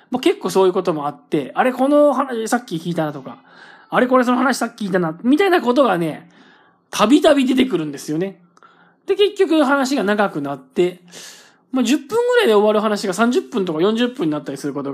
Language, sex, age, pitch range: Japanese, male, 20-39, 165-270 Hz